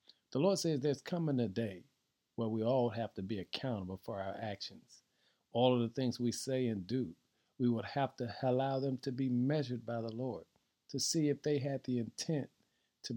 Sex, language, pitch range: male, English, 110-135 Hz